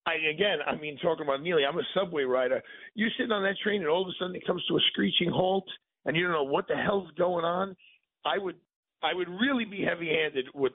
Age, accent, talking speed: 50-69, American, 245 wpm